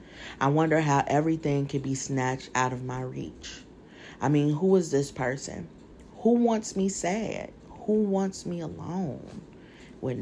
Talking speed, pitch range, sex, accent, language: 155 wpm, 135-165 Hz, female, American, English